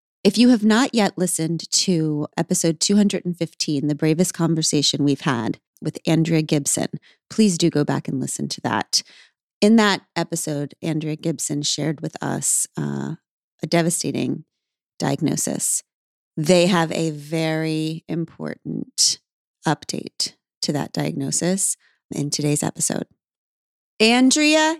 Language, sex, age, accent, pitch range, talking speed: English, female, 30-49, American, 165-220 Hz, 120 wpm